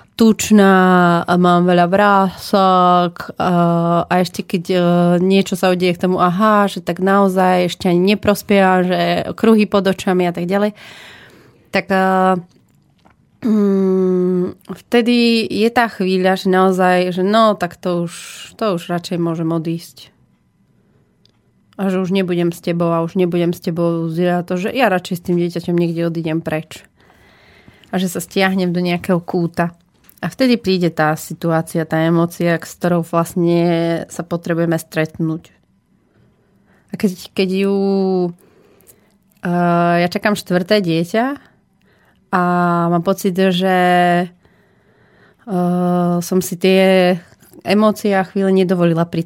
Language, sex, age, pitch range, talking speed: Slovak, female, 30-49, 170-195 Hz, 135 wpm